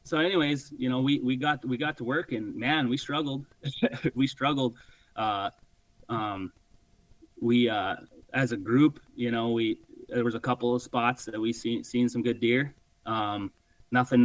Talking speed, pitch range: 175 wpm, 115-125 Hz